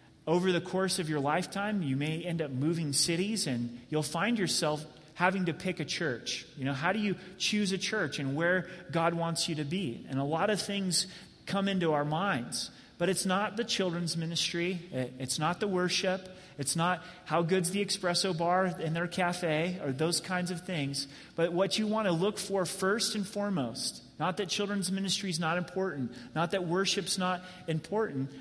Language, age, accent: English, 30-49, American